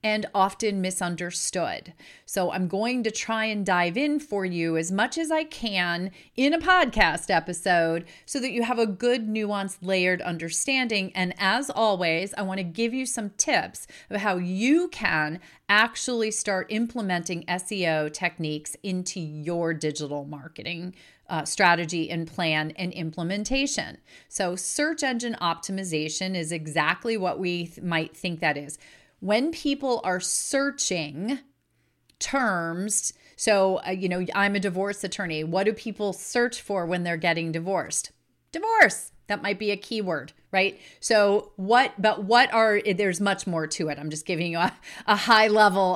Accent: American